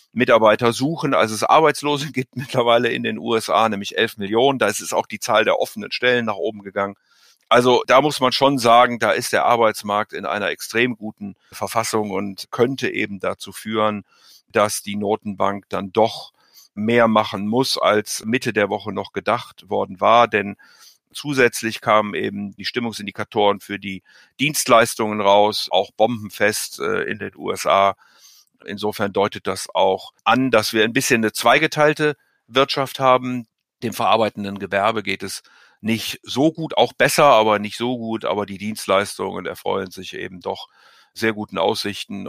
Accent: German